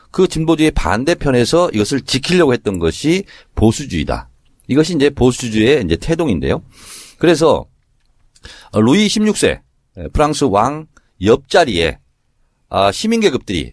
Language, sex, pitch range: Korean, male, 105-170 Hz